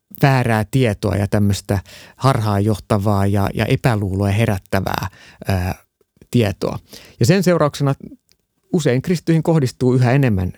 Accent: native